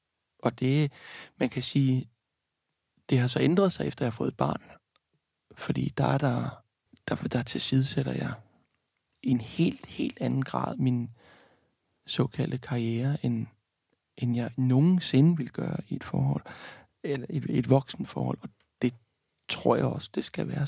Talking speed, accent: 160 wpm, native